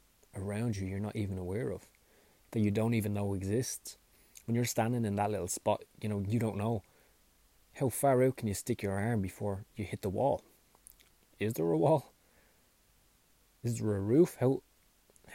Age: 20-39